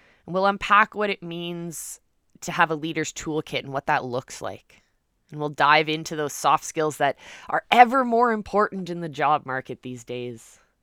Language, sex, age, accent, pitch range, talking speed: English, female, 20-39, American, 150-210 Hz, 185 wpm